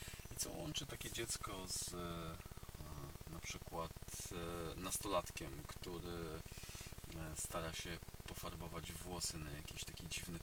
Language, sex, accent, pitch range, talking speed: Polish, male, native, 85-100 Hz, 100 wpm